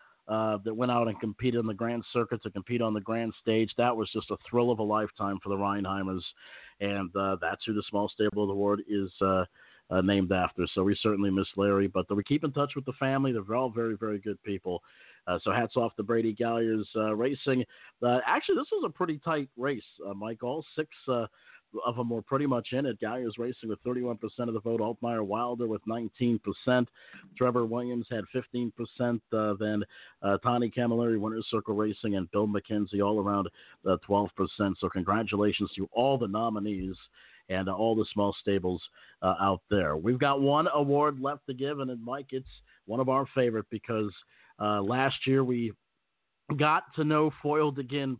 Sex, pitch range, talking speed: male, 105-125 Hz, 205 wpm